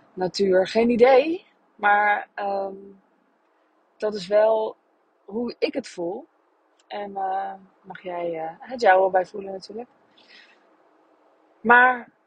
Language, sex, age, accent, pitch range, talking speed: Dutch, female, 20-39, Dutch, 190-235 Hz, 115 wpm